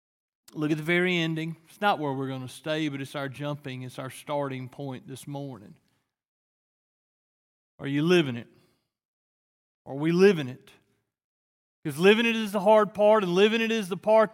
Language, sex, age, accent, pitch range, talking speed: English, male, 40-59, American, 165-225 Hz, 180 wpm